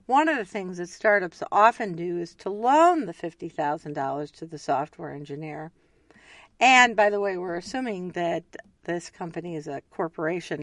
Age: 50-69